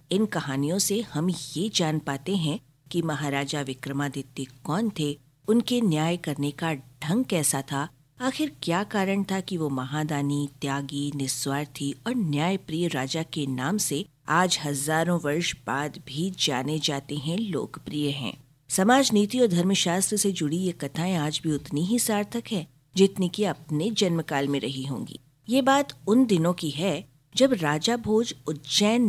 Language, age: Hindi, 50-69